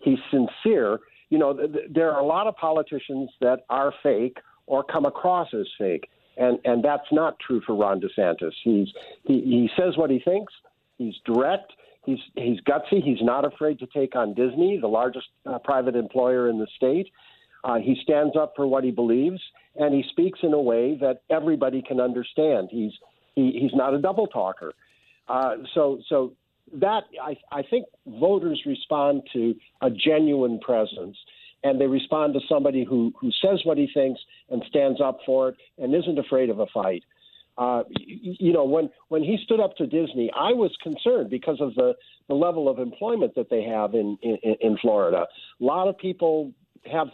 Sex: male